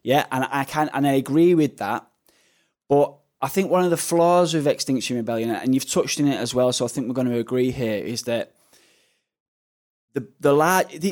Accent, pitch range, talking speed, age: British, 120-145 Hz, 210 wpm, 20-39